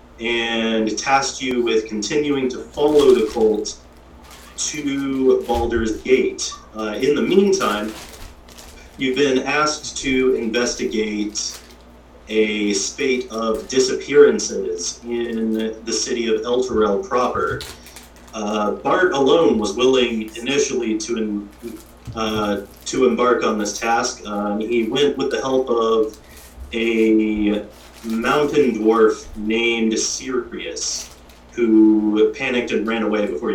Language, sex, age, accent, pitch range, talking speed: English, male, 30-49, American, 105-130 Hz, 110 wpm